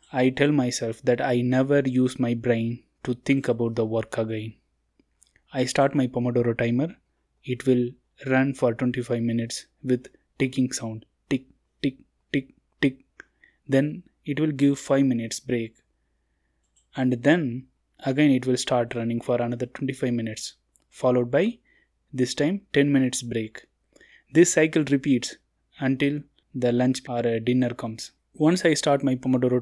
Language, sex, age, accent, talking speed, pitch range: Tamil, male, 20-39, native, 145 wpm, 120-140 Hz